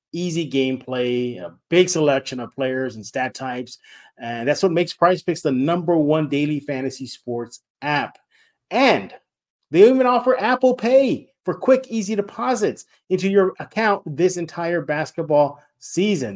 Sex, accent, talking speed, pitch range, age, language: male, American, 145 wpm, 135-190 Hz, 30-49, English